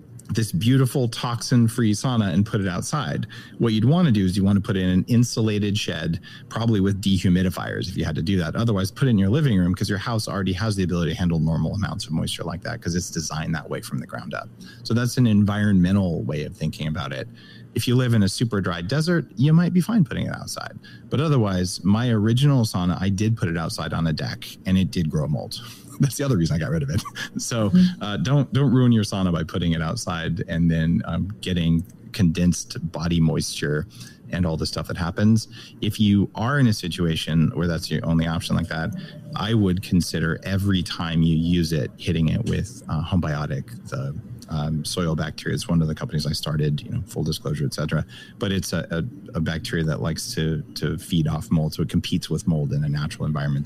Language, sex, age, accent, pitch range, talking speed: English, male, 30-49, American, 85-120 Hz, 230 wpm